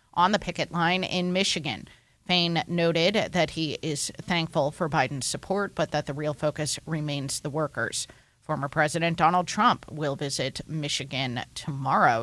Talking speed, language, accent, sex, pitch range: 150 wpm, English, American, female, 145-175 Hz